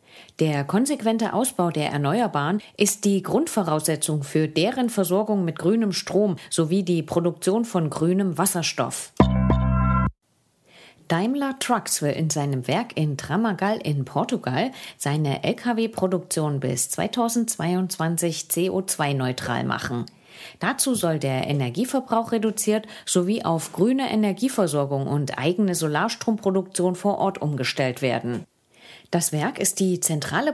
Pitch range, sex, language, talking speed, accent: 150-210 Hz, female, English, 110 wpm, German